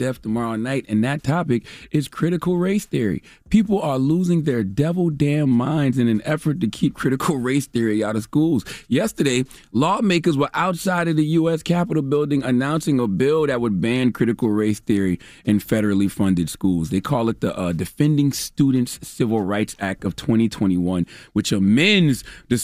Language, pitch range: English, 95-140 Hz